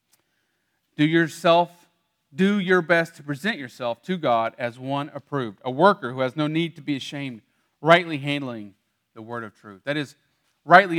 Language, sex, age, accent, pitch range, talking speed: English, male, 40-59, American, 125-165 Hz, 170 wpm